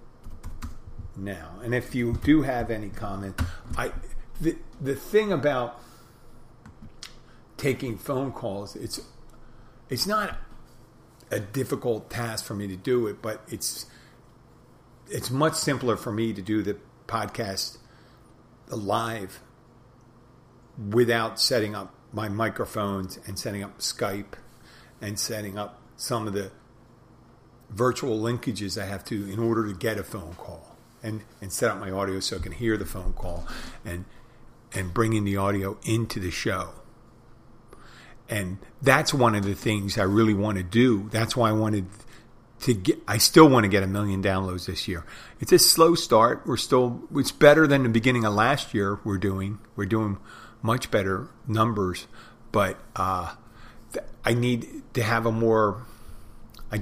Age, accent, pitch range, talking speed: 50-69, American, 100-120 Hz, 155 wpm